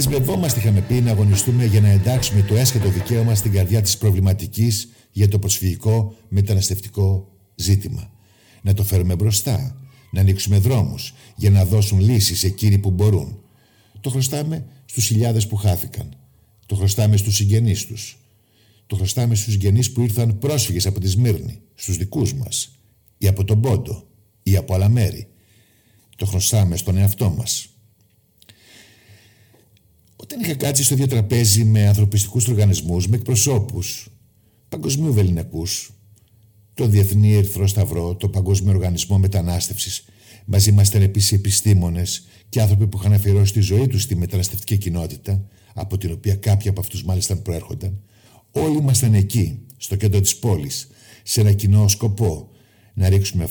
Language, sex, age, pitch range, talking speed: Greek, male, 50-69, 100-115 Hz, 145 wpm